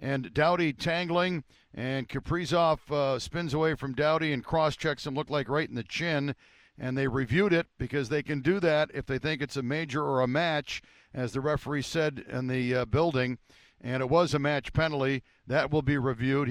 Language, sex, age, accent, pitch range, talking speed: English, male, 60-79, American, 130-195 Hz, 200 wpm